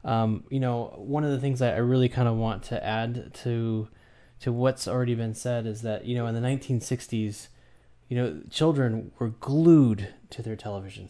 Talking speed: 195 wpm